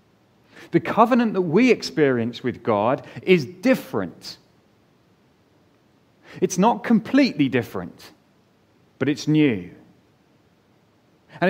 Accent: British